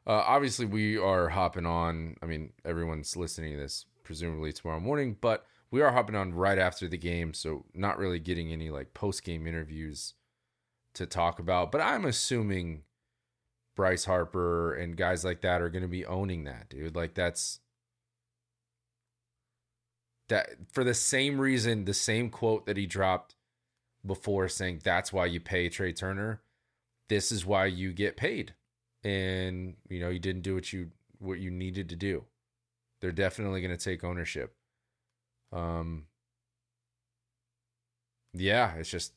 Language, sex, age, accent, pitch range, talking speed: English, male, 30-49, American, 85-120 Hz, 155 wpm